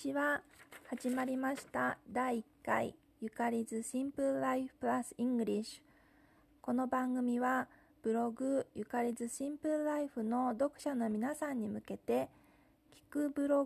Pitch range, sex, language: 225-290 Hz, female, Japanese